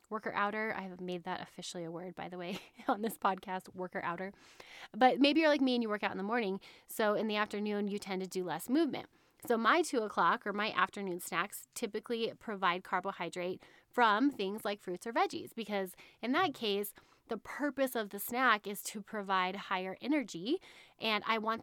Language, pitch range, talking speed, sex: English, 190-245 Hz, 205 wpm, female